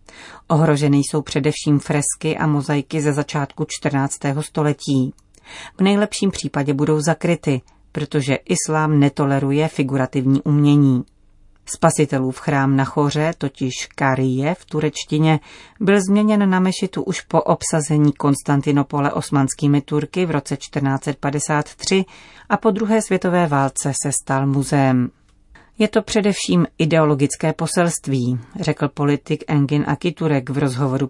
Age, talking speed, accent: 40-59, 120 wpm, native